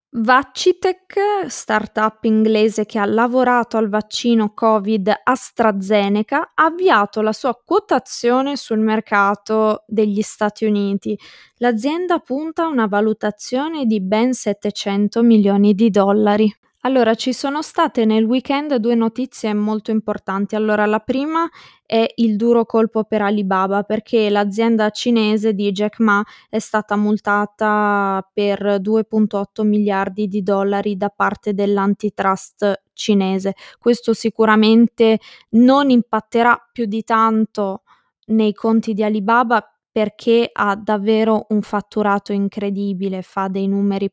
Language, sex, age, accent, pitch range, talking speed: Italian, female, 20-39, native, 205-240 Hz, 120 wpm